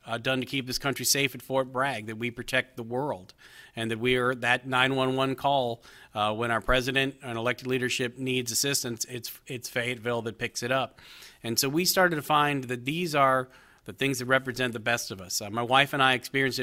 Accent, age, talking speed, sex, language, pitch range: American, 40-59, 220 wpm, male, English, 120-140 Hz